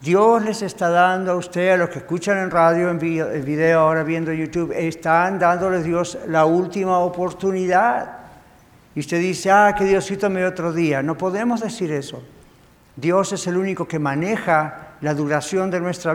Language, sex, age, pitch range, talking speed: English, male, 60-79, 150-185 Hz, 180 wpm